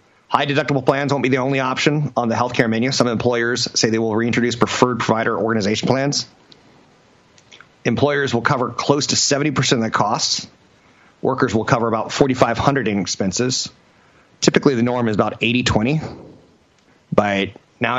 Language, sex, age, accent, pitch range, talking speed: English, male, 30-49, American, 110-140 Hz, 155 wpm